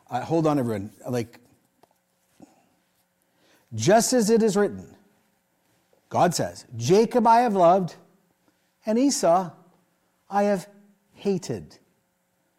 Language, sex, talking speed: English, male, 100 wpm